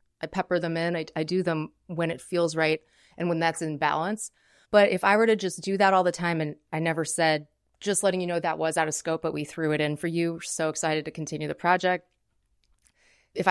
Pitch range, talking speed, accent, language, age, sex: 160-200 Hz, 245 wpm, American, English, 30-49, female